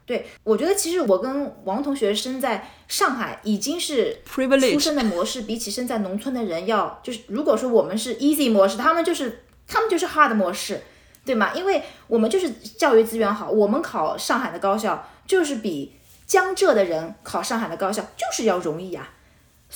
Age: 20-39